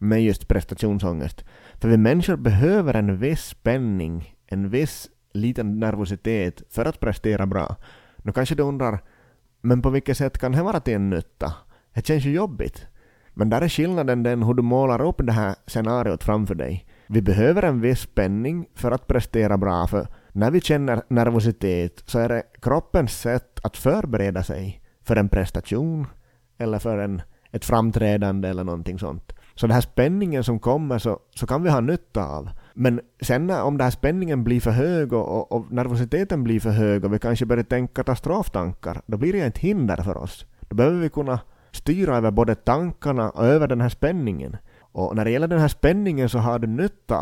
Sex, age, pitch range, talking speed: male, 30-49, 105-130 Hz, 190 wpm